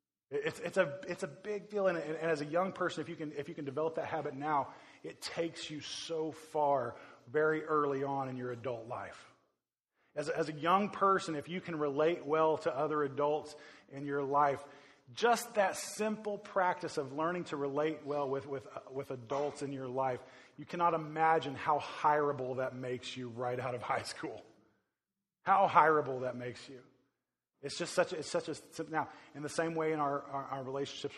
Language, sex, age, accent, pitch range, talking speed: English, male, 20-39, American, 130-155 Hz, 200 wpm